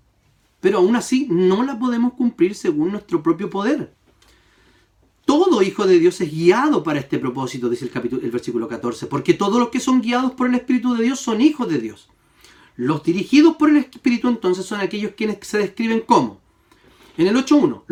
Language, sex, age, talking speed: Spanish, male, 40-59, 190 wpm